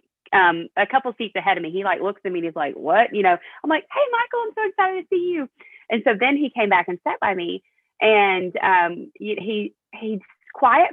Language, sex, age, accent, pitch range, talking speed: English, female, 30-49, American, 180-245 Hz, 235 wpm